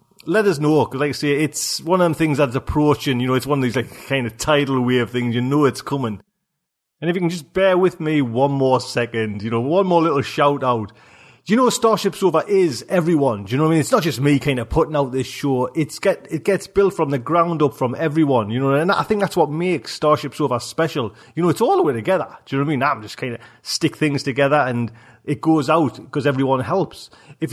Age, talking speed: 30-49, 265 wpm